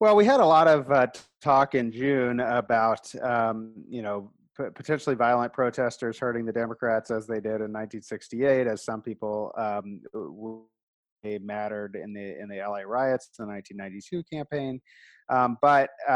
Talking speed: 155 wpm